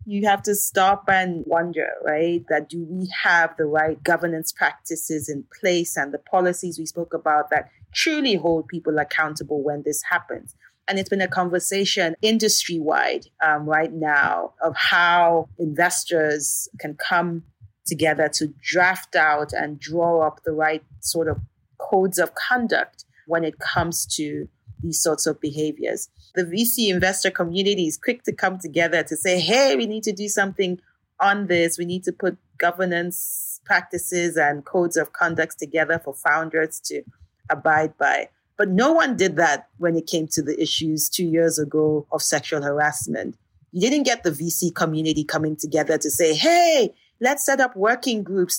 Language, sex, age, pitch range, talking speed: English, female, 30-49, 155-185 Hz, 165 wpm